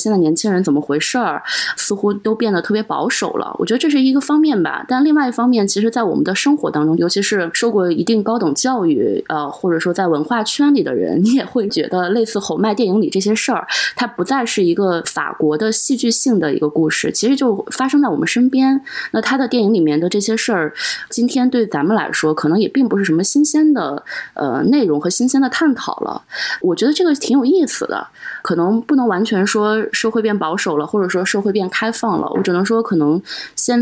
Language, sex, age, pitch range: Chinese, female, 20-39, 185-255 Hz